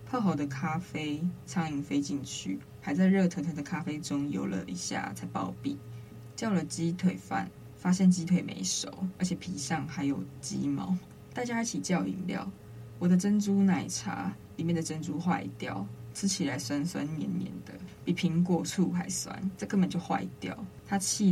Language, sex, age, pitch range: Chinese, female, 20-39, 135-180 Hz